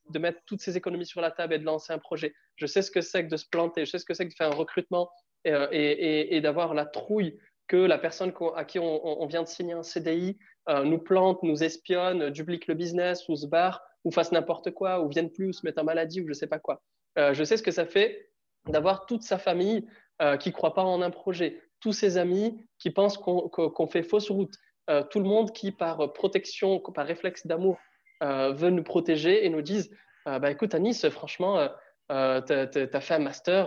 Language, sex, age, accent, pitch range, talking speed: French, male, 20-39, French, 155-195 Hz, 250 wpm